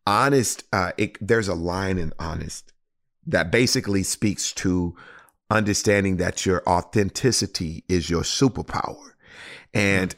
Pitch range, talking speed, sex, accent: 95-130 Hz, 110 wpm, male, American